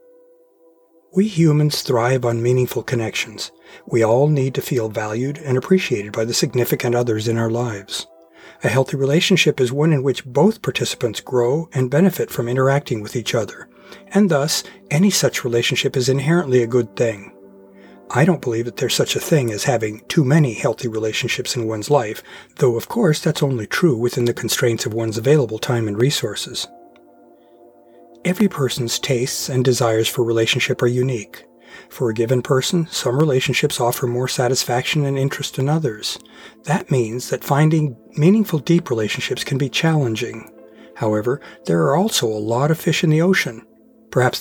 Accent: American